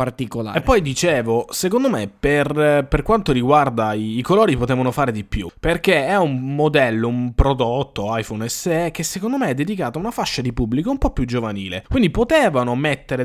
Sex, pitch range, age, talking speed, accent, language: male, 125-170 Hz, 20-39, 185 wpm, native, Italian